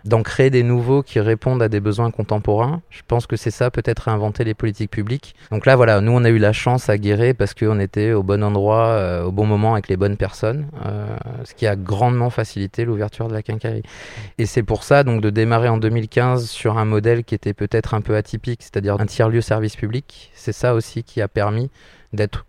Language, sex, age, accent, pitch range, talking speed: French, male, 20-39, French, 105-120 Hz, 230 wpm